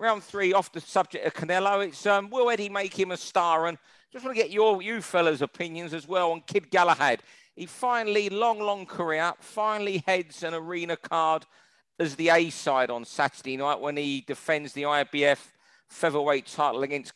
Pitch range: 145-185 Hz